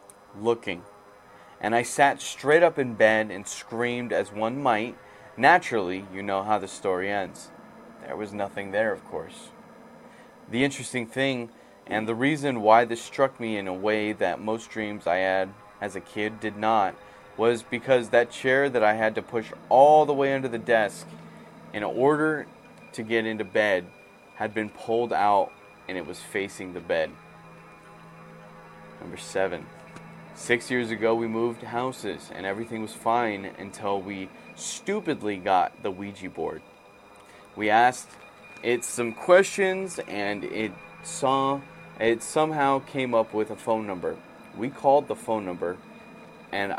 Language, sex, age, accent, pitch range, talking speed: English, male, 20-39, American, 105-125 Hz, 155 wpm